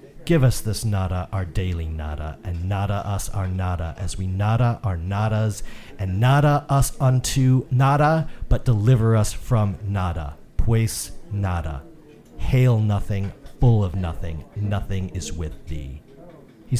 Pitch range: 85-115 Hz